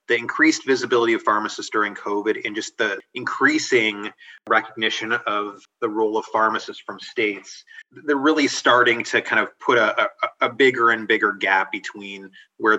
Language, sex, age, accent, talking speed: English, male, 30-49, American, 160 wpm